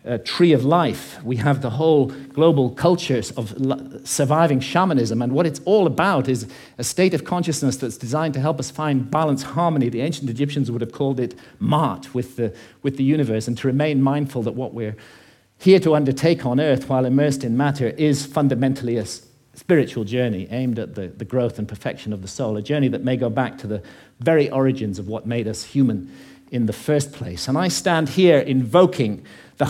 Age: 50-69